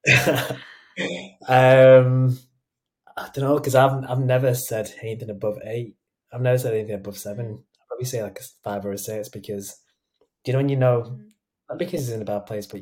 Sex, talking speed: male, 190 wpm